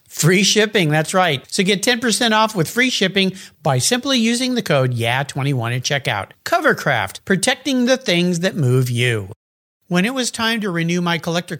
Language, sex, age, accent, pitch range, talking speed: English, male, 50-69, American, 155-225 Hz, 180 wpm